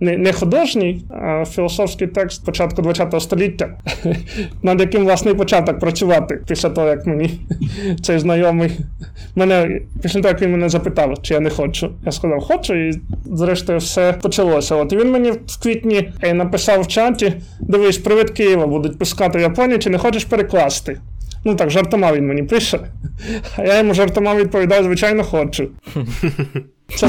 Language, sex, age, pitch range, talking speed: Ukrainian, male, 20-39, 165-205 Hz, 155 wpm